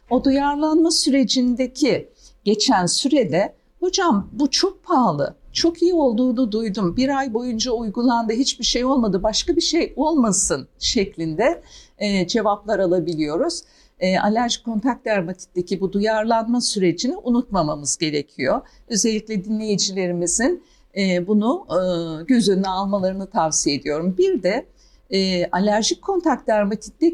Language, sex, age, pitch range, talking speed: Turkish, female, 50-69, 195-275 Hz, 115 wpm